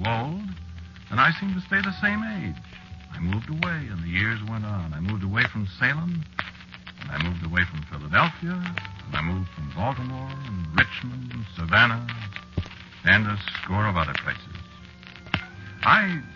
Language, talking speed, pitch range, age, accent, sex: English, 160 wpm, 85-110 Hz, 60-79, American, male